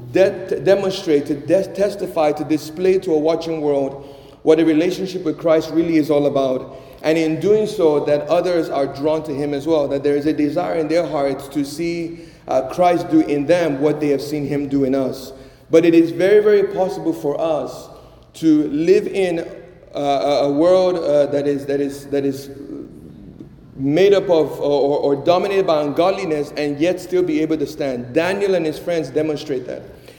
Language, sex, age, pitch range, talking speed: English, male, 30-49, 145-170 Hz, 190 wpm